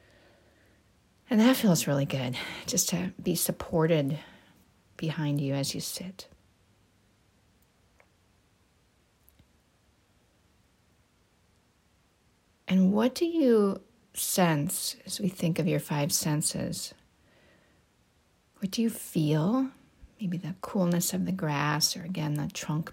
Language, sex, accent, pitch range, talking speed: English, female, American, 155-190 Hz, 105 wpm